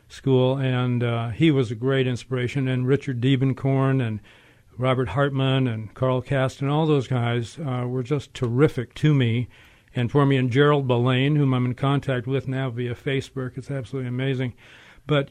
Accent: American